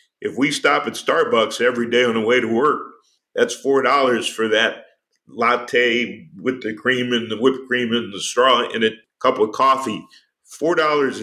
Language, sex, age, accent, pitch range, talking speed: English, male, 50-69, American, 115-170 Hz, 175 wpm